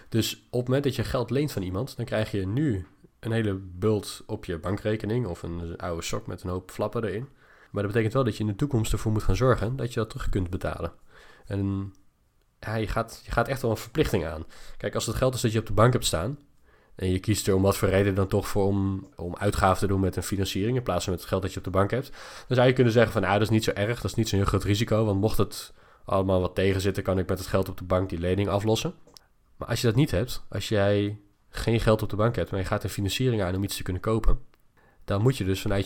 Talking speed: 285 wpm